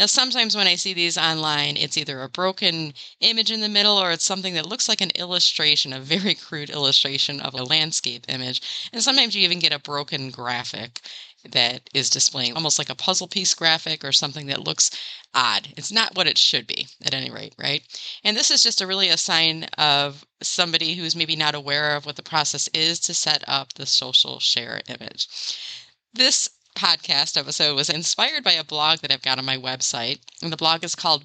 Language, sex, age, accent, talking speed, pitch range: English, female, 30-49, American, 205 wpm, 145-190 Hz